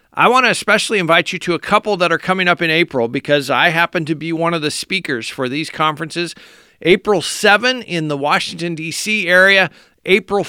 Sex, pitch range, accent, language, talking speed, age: male, 155-205 Hz, American, English, 200 wpm, 50-69